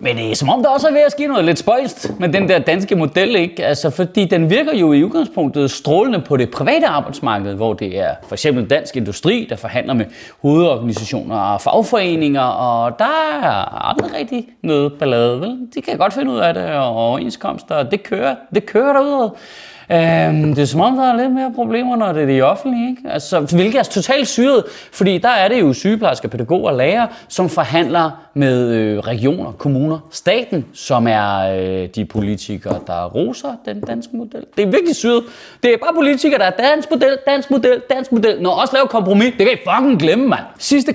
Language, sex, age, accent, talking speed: Danish, male, 30-49, native, 205 wpm